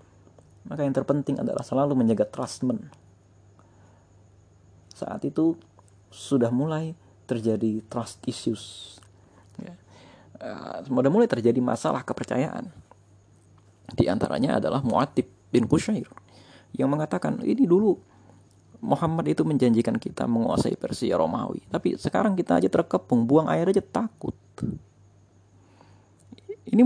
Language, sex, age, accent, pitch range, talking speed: Indonesian, male, 30-49, native, 100-125 Hz, 105 wpm